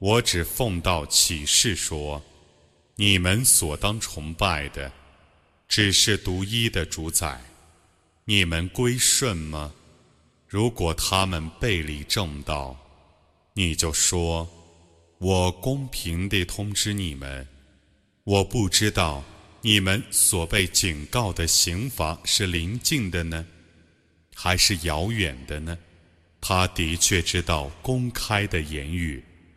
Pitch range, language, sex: 80-105 Hz, Arabic, male